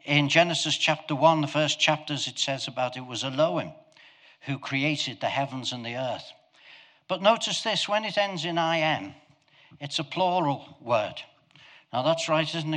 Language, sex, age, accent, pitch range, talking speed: English, male, 60-79, British, 130-165 Hz, 175 wpm